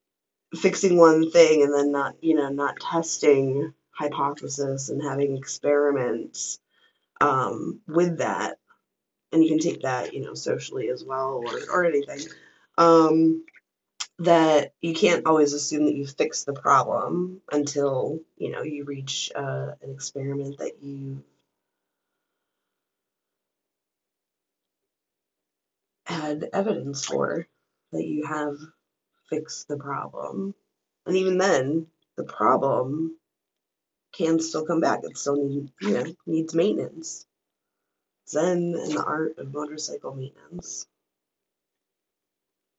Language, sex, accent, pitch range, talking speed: English, female, American, 140-165 Hz, 110 wpm